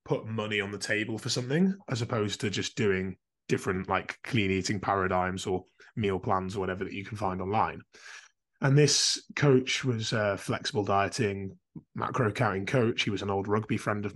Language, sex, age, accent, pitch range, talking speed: English, male, 20-39, British, 100-125 Hz, 185 wpm